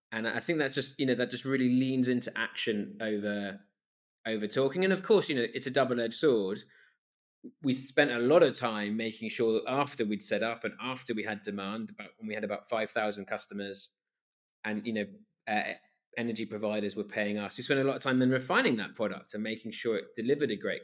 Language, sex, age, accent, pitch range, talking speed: English, male, 20-39, British, 105-130 Hz, 215 wpm